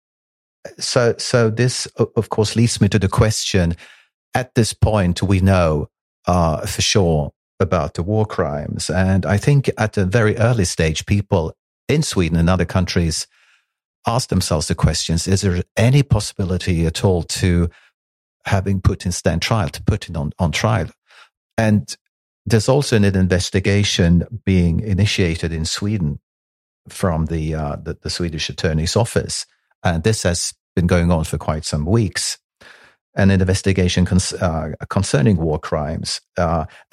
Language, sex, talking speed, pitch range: Swedish, male, 150 wpm, 85-105 Hz